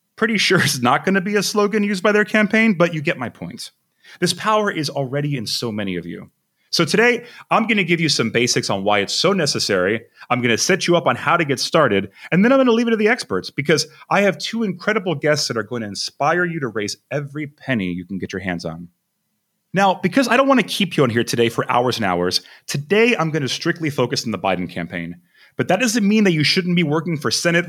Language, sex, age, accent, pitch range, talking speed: English, male, 30-49, American, 110-180 Hz, 260 wpm